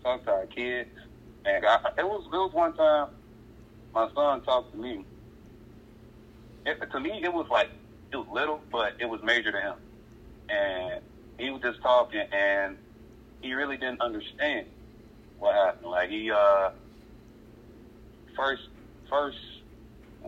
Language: English